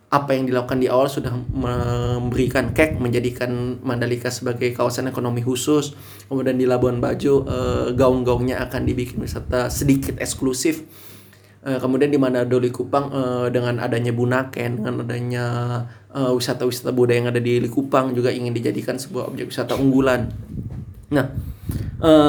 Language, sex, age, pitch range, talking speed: Indonesian, male, 20-39, 120-145 Hz, 125 wpm